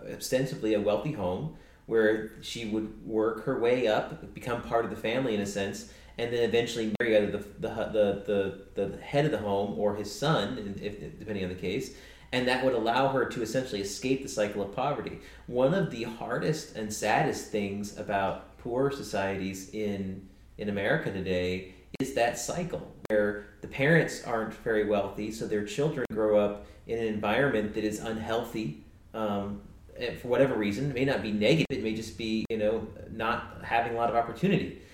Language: English